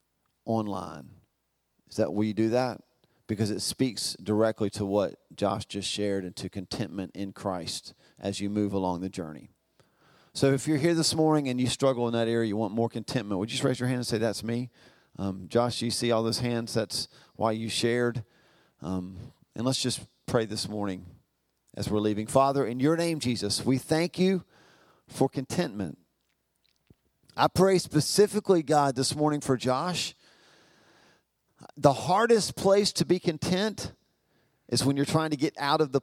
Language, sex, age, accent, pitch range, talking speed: English, male, 40-59, American, 115-155 Hz, 175 wpm